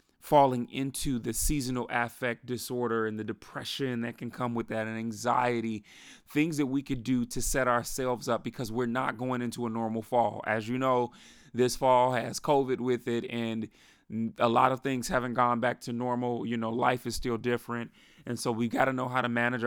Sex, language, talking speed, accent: male, English, 205 wpm, American